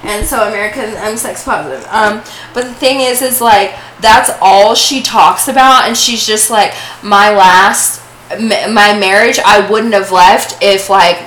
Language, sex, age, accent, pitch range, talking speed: English, female, 20-39, American, 200-235 Hz, 175 wpm